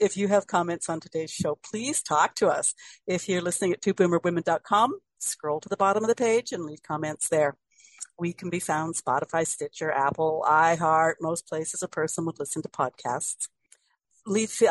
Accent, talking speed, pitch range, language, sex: American, 180 wpm, 160-230 Hz, English, female